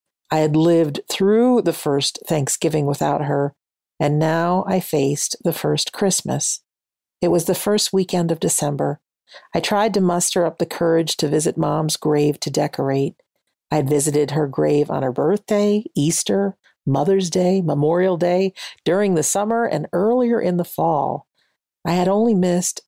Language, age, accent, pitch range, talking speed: English, 50-69, American, 150-190 Hz, 155 wpm